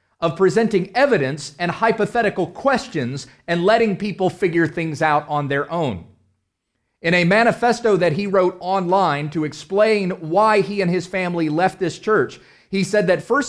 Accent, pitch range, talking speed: American, 135-205 Hz, 160 wpm